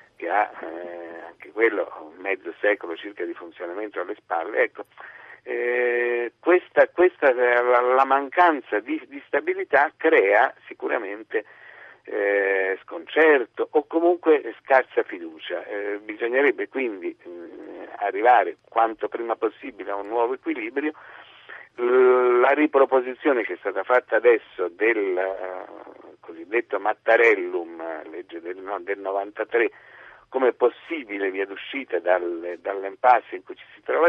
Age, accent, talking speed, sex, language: 50-69, native, 125 wpm, male, Italian